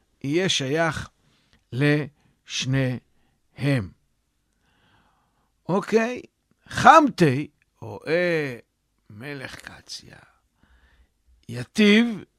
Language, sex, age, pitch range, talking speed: Hebrew, male, 60-79, 140-200 Hz, 50 wpm